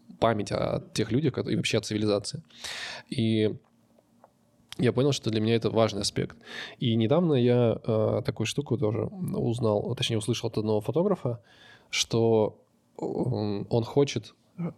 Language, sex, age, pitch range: Russian, male, 20-39, 110-125 Hz